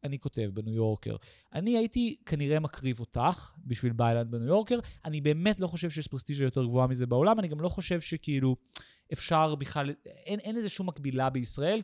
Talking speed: 190 wpm